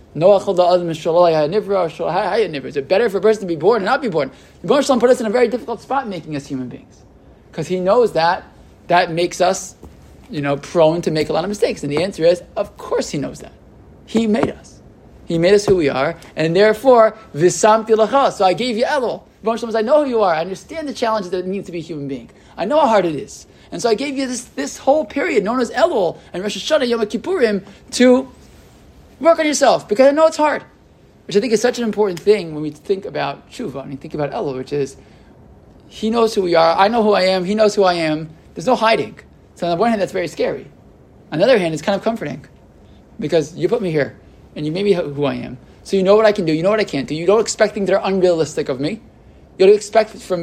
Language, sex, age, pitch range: English, male, 20-39, 165-225 Hz